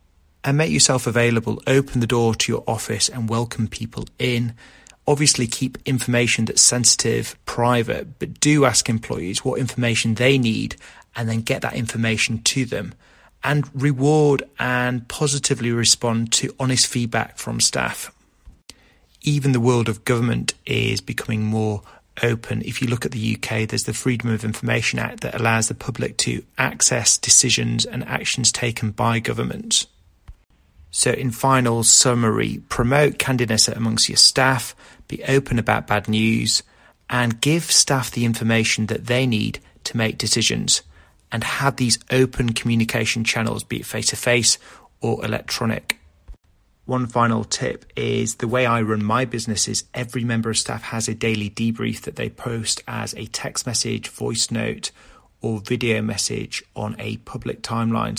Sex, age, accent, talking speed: male, 30-49, British, 155 wpm